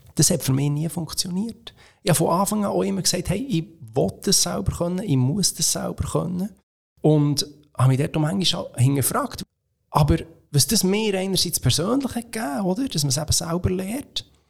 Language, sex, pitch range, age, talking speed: English, male, 130-175 Hz, 30-49, 195 wpm